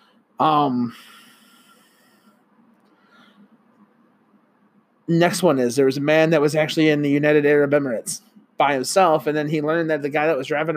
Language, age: English, 30-49